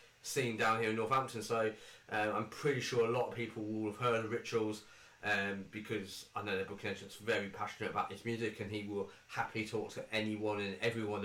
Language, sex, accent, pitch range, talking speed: English, male, British, 110-130 Hz, 220 wpm